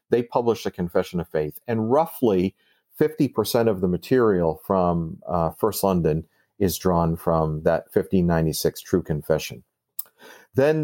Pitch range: 85-120 Hz